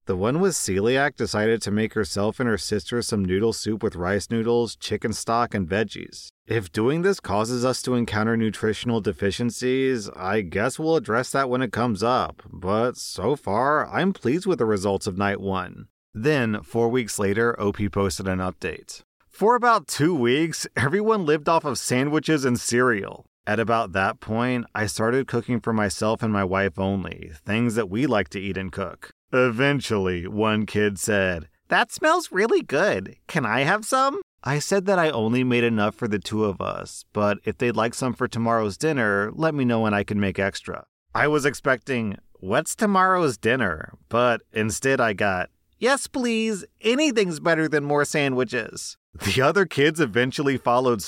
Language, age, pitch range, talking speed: English, 30-49, 105-140 Hz, 180 wpm